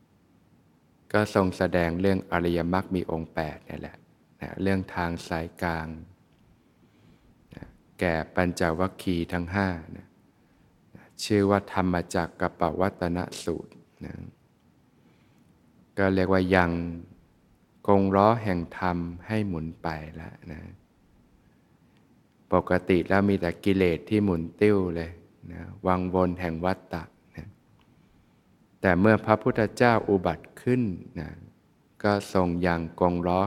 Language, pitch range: Thai, 85-95 Hz